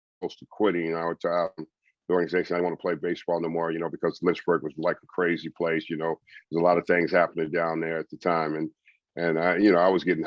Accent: American